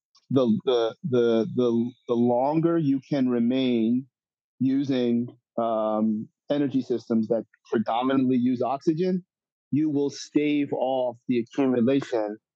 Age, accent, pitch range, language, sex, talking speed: 40-59, American, 115-140 Hz, English, male, 110 wpm